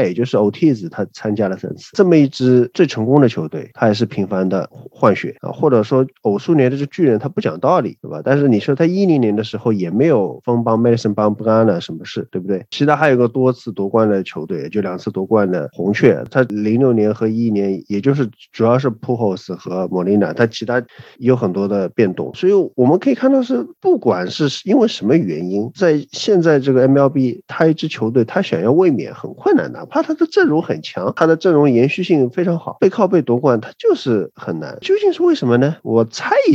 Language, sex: Chinese, male